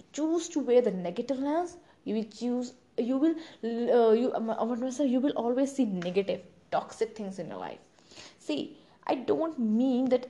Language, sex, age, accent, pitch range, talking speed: English, female, 20-39, Indian, 195-250 Hz, 165 wpm